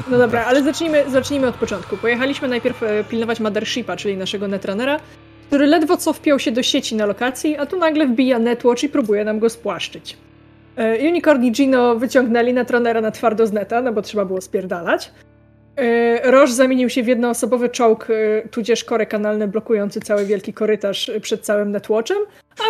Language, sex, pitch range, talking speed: Polish, female, 230-290 Hz, 180 wpm